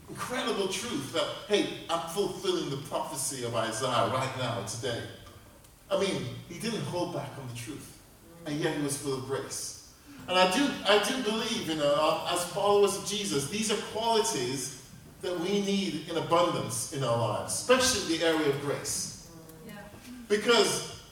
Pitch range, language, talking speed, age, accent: 120-175 Hz, English, 170 wpm, 40-59, American